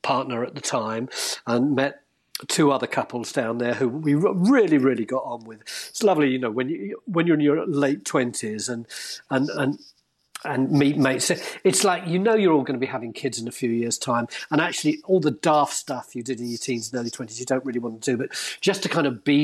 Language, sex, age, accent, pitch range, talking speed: English, male, 40-59, British, 125-160 Hz, 240 wpm